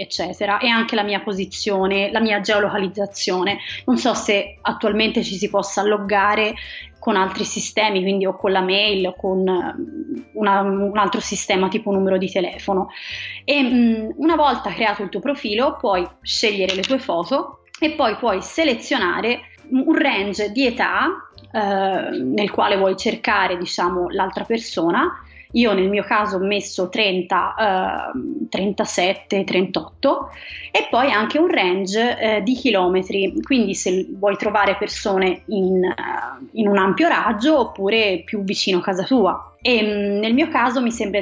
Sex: female